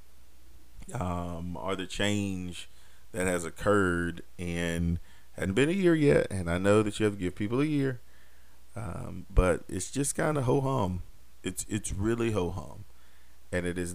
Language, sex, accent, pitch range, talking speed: English, male, American, 80-100 Hz, 170 wpm